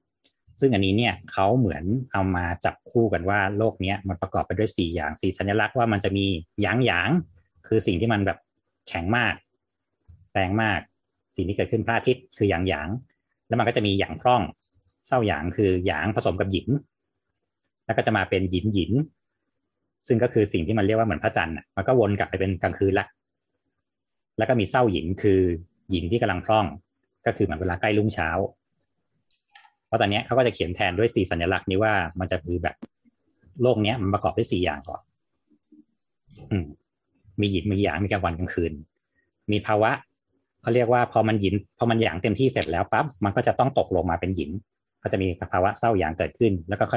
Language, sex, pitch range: Thai, male, 90-110 Hz